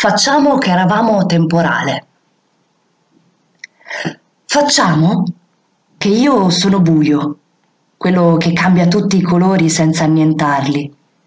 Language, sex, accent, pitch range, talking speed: Italian, female, native, 150-195 Hz, 90 wpm